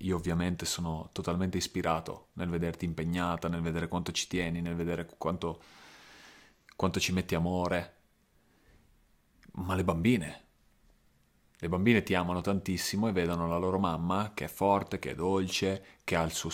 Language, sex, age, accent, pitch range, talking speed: Italian, male, 30-49, native, 85-95 Hz, 155 wpm